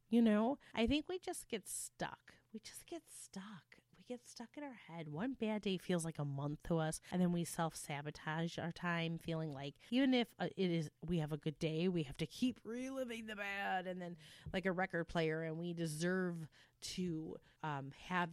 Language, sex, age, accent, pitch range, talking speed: English, female, 30-49, American, 155-210 Hz, 205 wpm